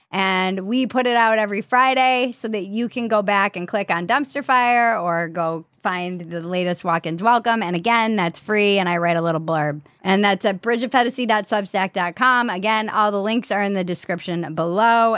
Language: English